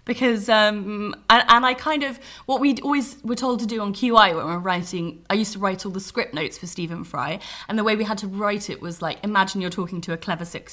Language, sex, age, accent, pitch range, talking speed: English, female, 20-39, British, 165-210 Hz, 265 wpm